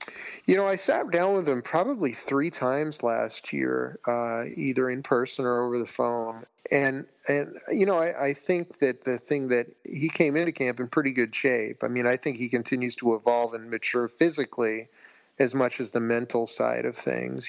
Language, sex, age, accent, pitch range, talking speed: English, male, 40-59, American, 115-130 Hz, 200 wpm